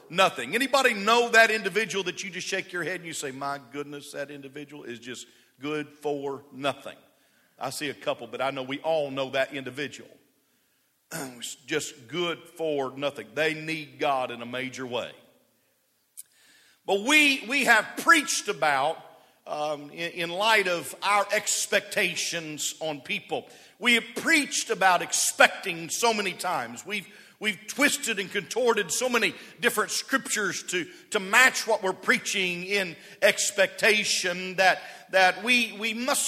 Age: 50-69